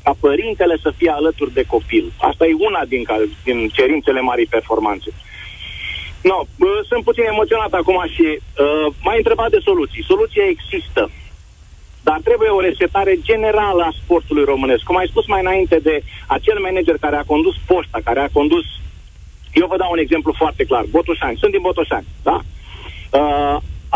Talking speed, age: 160 wpm, 40-59